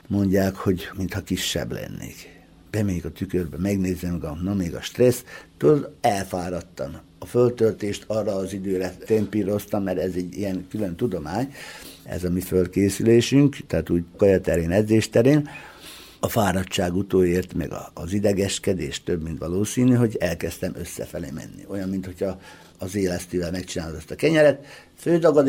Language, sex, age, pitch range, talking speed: Hungarian, male, 60-79, 90-120 Hz, 145 wpm